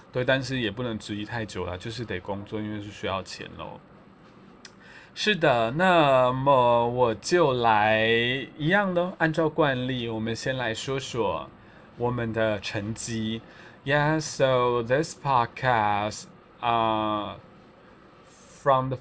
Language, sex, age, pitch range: Chinese, male, 20-39, 110-140 Hz